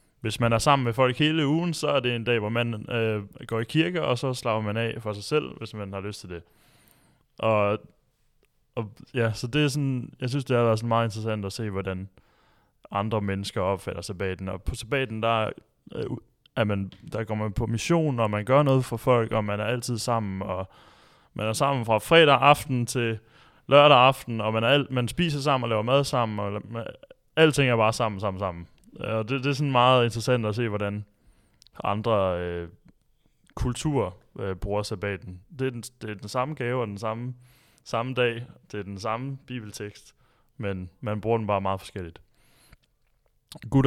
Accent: native